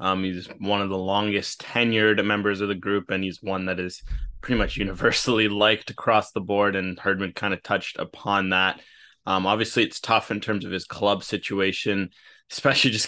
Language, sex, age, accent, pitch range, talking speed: English, male, 20-39, American, 95-110 Hz, 195 wpm